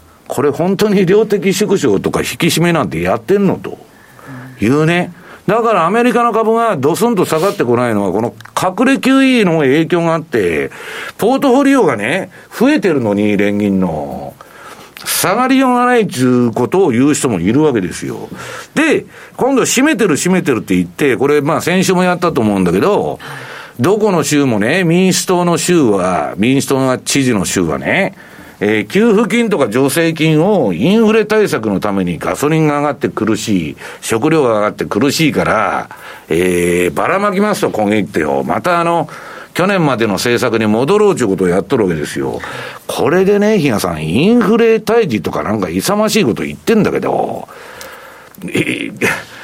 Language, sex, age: Japanese, male, 50-69